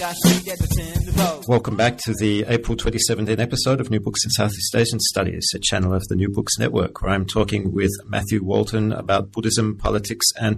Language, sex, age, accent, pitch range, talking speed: English, male, 40-59, Australian, 100-115 Hz, 175 wpm